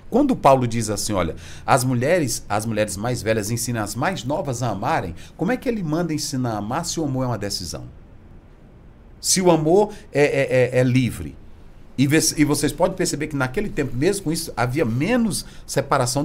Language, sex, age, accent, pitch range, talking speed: Portuguese, male, 40-59, Brazilian, 115-175 Hz, 190 wpm